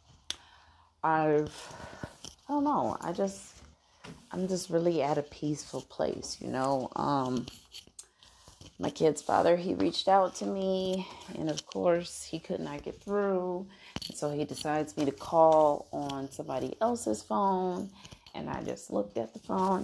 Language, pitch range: English, 135-165 Hz